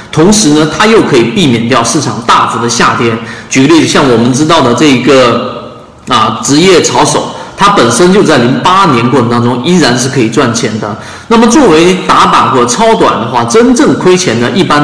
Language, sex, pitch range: Chinese, male, 120-165 Hz